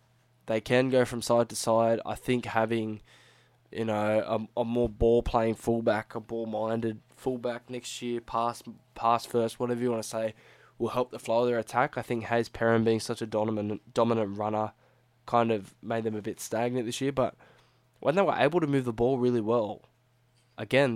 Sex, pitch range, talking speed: male, 115-130 Hz, 200 wpm